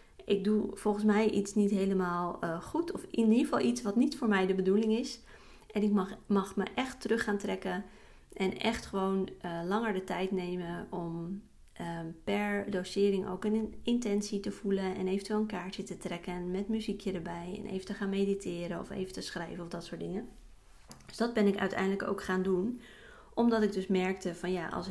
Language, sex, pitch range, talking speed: Dutch, female, 185-210 Hz, 200 wpm